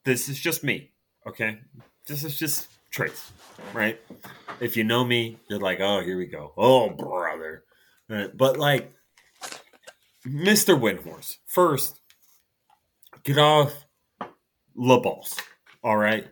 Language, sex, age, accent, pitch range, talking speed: English, male, 30-49, American, 105-150 Hz, 120 wpm